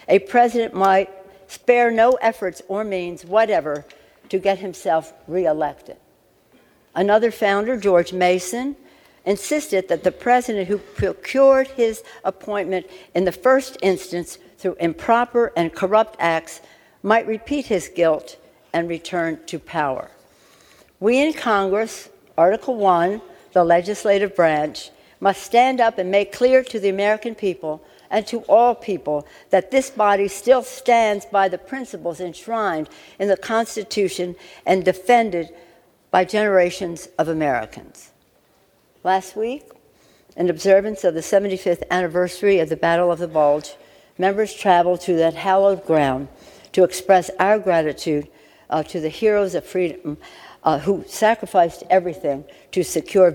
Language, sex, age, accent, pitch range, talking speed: English, female, 60-79, American, 175-215 Hz, 135 wpm